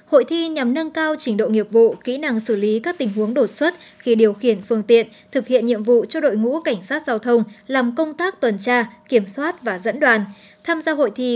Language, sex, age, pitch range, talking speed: Vietnamese, male, 10-29, 220-275 Hz, 255 wpm